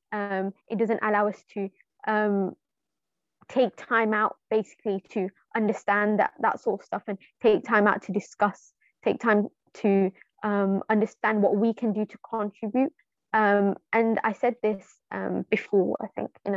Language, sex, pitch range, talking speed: English, female, 200-225 Hz, 165 wpm